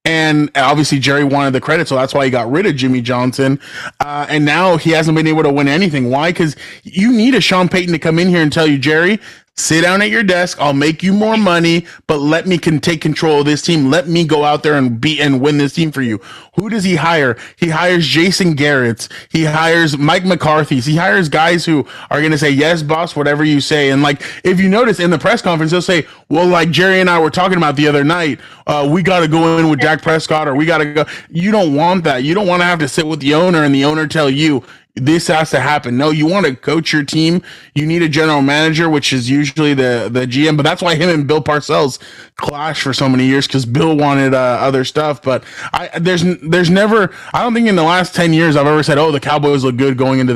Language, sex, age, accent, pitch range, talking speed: English, male, 20-39, American, 140-170 Hz, 255 wpm